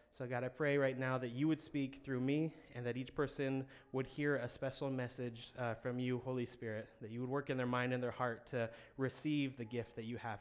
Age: 20-39